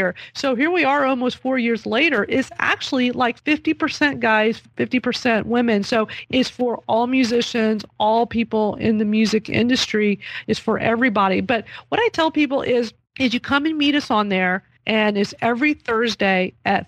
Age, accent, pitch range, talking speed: 40-59, American, 220-270 Hz, 170 wpm